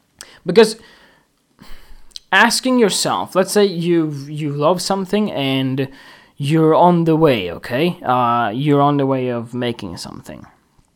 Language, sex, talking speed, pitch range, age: English, male, 120 wpm, 130-185 Hz, 20-39